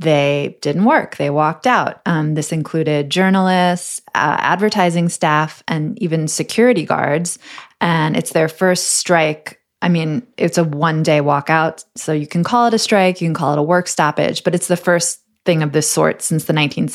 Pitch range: 160-195 Hz